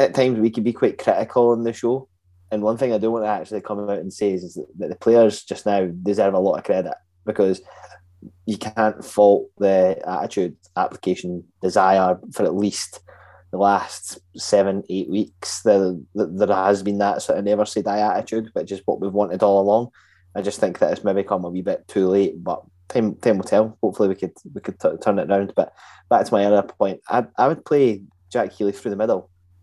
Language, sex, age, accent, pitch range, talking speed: English, male, 20-39, British, 95-105 Hz, 220 wpm